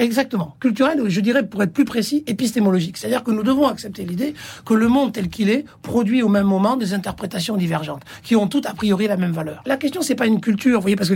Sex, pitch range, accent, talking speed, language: male, 195-245 Hz, French, 245 wpm, French